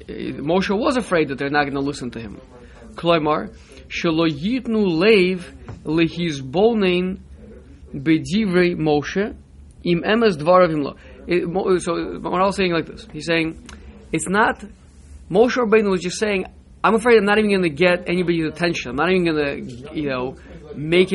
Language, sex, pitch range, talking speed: English, male, 145-185 Hz, 125 wpm